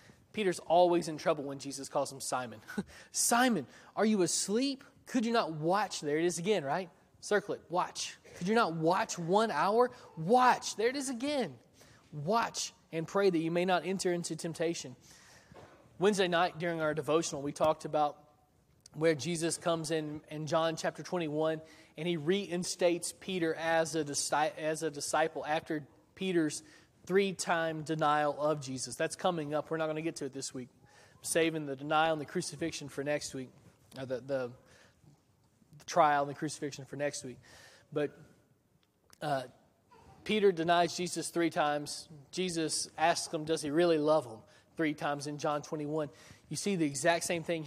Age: 20-39